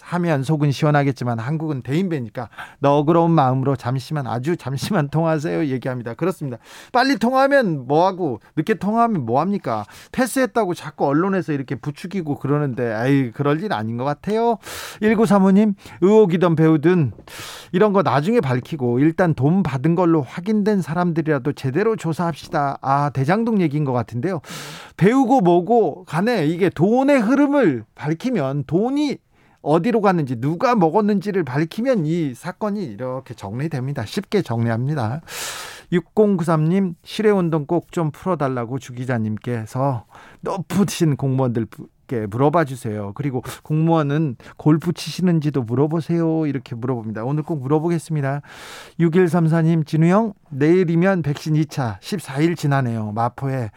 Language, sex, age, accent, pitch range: Korean, male, 40-59, native, 135-180 Hz